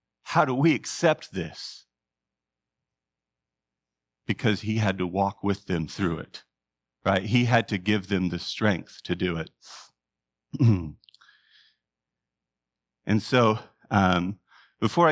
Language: English